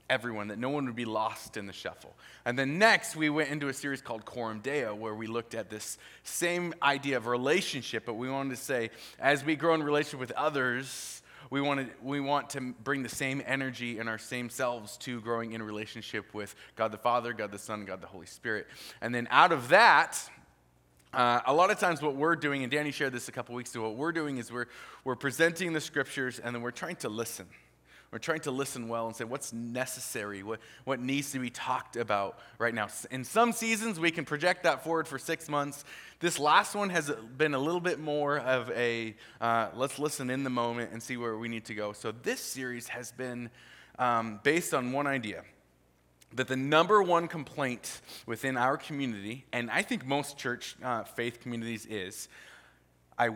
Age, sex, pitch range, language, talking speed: 30-49, male, 115-145 Hz, English, 210 wpm